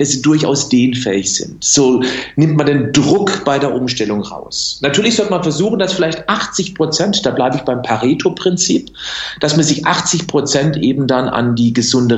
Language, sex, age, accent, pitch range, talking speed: German, male, 50-69, German, 130-170 Hz, 180 wpm